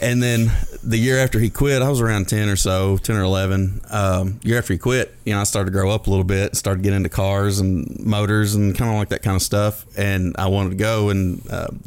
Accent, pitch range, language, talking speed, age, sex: American, 95-105 Hz, English, 265 wpm, 30-49, male